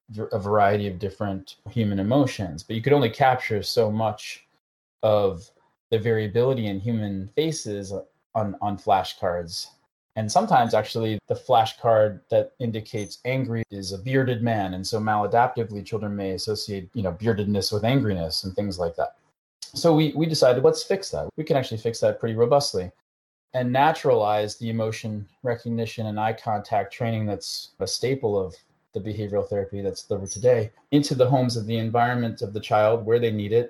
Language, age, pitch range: English, 20-39, 100-120 Hz